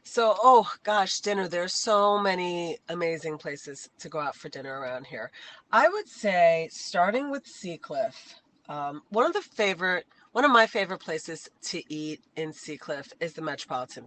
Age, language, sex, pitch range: 30-49, English, female, 155-215 Hz